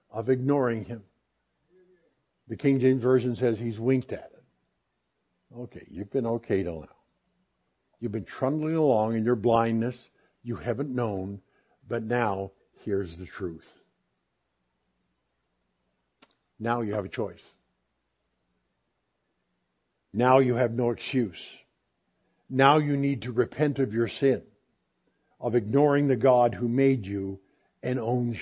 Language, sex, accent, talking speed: English, male, American, 125 wpm